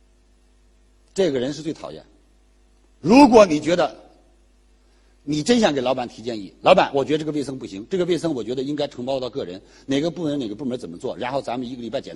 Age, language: 50-69, Chinese